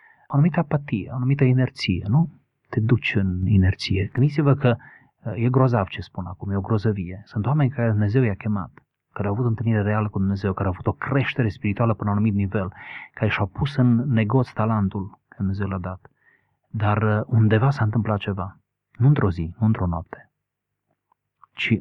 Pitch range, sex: 95-120 Hz, male